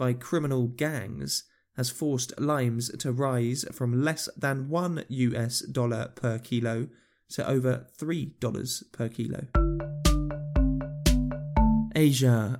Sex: male